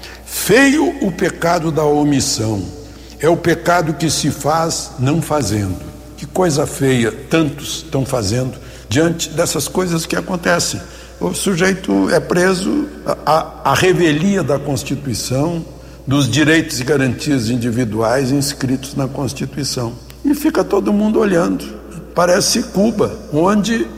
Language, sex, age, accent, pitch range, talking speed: Portuguese, male, 60-79, Brazilian, 140-180 Hz, 120 wpm